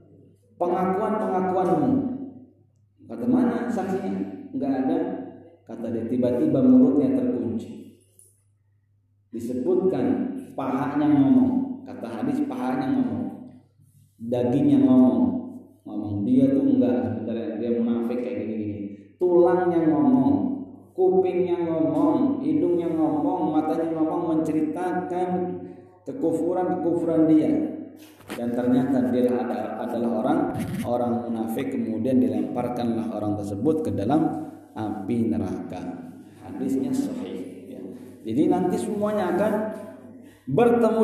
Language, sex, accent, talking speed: Indonesian, male, native, 90 wpm